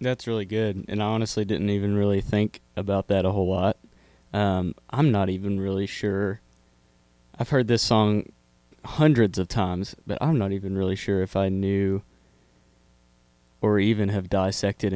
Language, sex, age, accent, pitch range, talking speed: English, male, 20-39, American, 85-100 Hz, 165 wpm